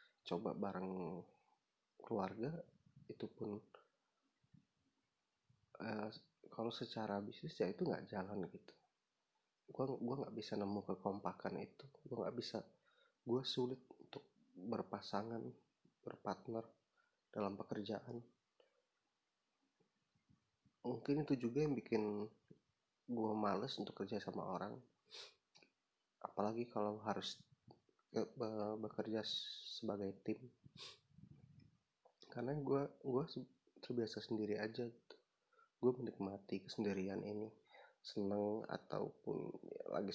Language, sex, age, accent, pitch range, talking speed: Indonesian, male, 30-49, native, 105-130 Hz, 95 wpm